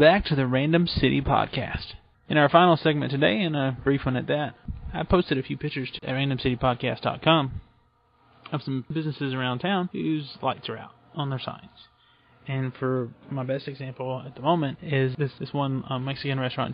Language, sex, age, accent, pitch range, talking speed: English, male, 20-39, American, 130-145 Hz, 180 wpm